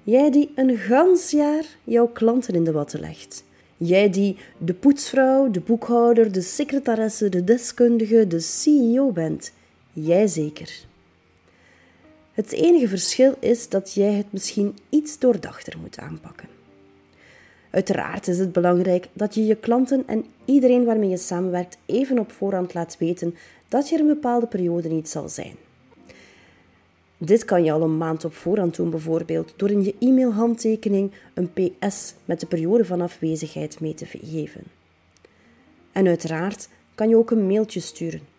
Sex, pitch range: female, 160-235 Hz